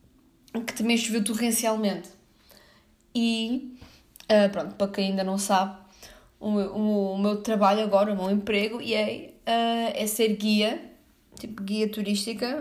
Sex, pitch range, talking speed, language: female, 205-255 Hz, 150 wpm, Portuguese